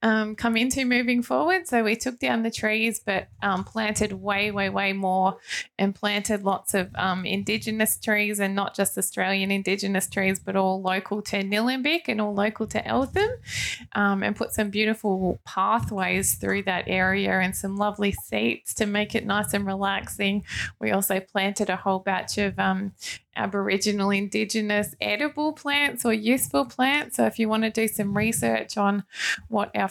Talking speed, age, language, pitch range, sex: 175 wpm, 20-39, English, 195-220 Hz, female